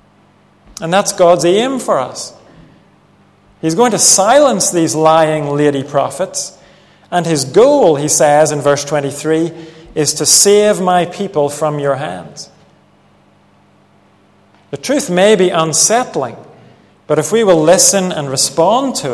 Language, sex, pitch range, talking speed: English, male, 130-175 Hz, 135 wpm